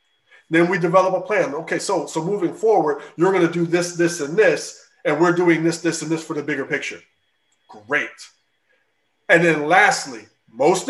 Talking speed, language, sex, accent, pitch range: 185 wpm, English, male, American, 155-215 Hz